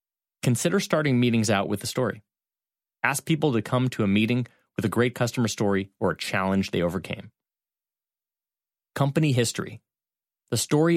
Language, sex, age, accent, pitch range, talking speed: English, male, 30-49, American, 100-130 Hz, 155 wpm